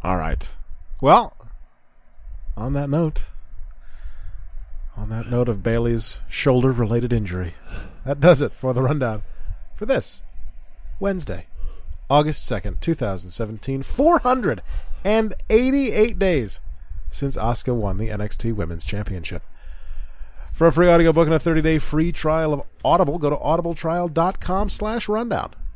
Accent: American